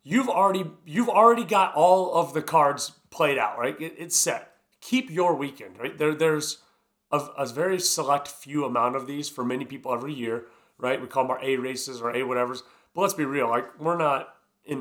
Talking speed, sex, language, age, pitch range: 210 wpm, male, English, 30-49, 130-170 Hz